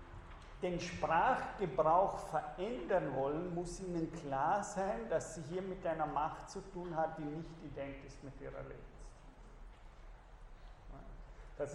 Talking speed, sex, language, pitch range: 115 wpm, male, German, 150-175 Hz